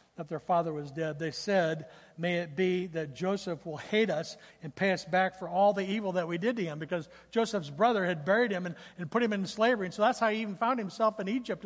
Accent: American